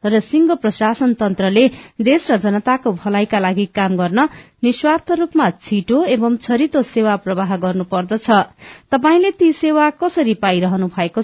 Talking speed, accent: 130 wpm, Indian